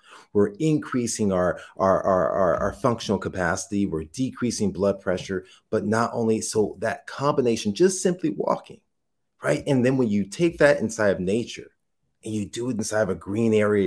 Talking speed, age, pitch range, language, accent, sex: 175 wpm, 30-49, 95-120 Hz, English, American, male